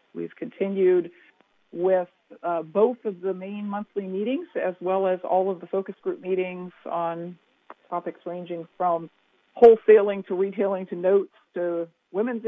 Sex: female